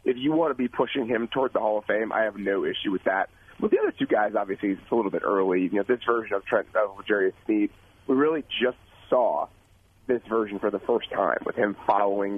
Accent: American